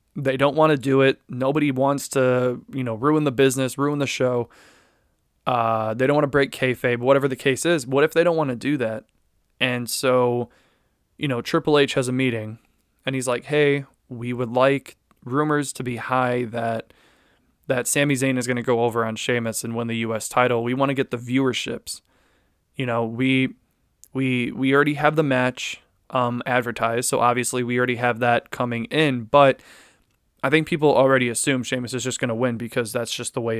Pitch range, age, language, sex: 120-140 Hz, 20-39, English, male